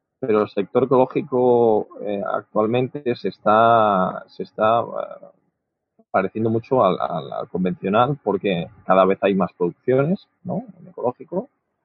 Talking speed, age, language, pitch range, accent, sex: 130 wpm, 20-39, Spanish, 105-140 Hz, Spanish, male